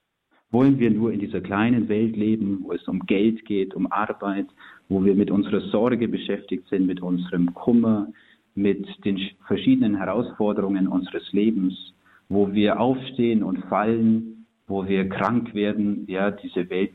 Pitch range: 95-110 Hz